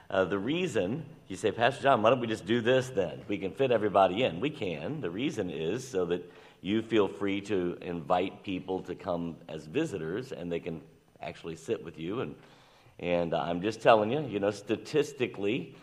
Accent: American